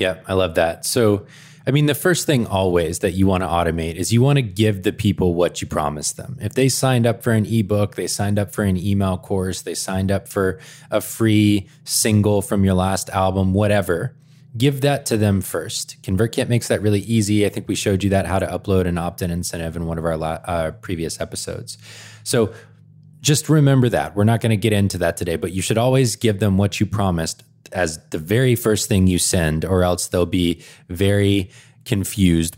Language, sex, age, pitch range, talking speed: English, male, 20-39, 90-115 Hz, 215 wpm